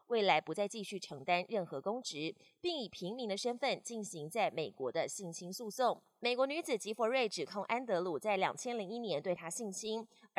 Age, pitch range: 20-39, 190-260 Hz